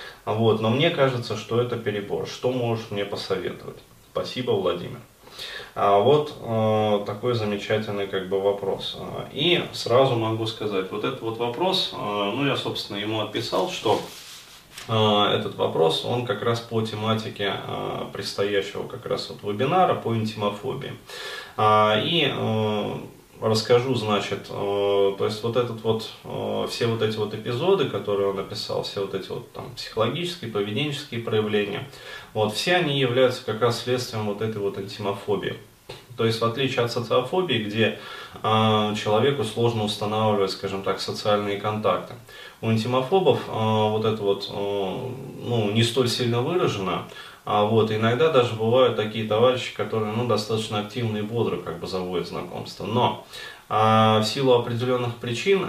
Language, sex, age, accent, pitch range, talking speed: Russian, male, 20-39, native, 105-120 Hz, 145 wpm